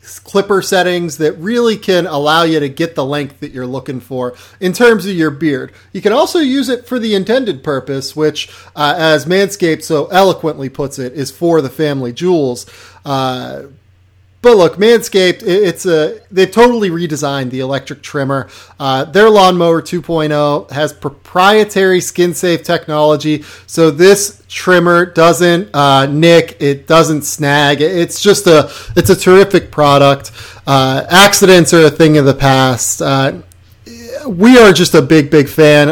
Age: 30-49